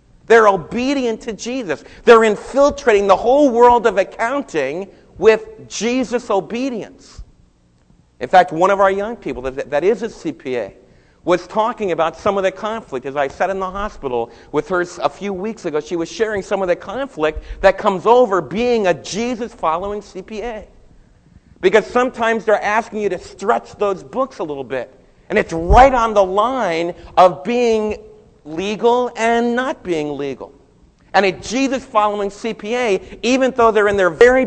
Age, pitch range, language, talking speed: 50-69, 185-235 Hz, English, 160 wpm